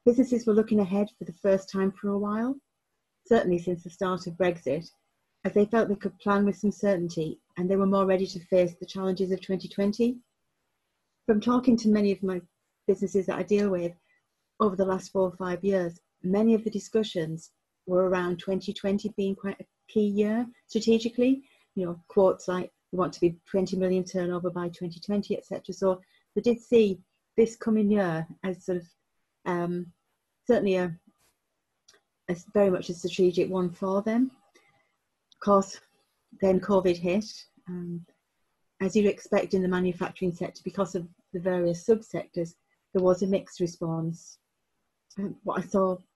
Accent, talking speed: British, 170 wpm